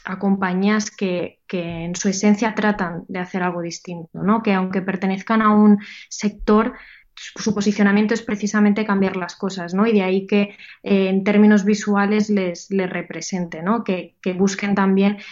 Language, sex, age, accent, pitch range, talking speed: Spanish, female, 20-39, Spanish, 185-210 Hz, 170 wpm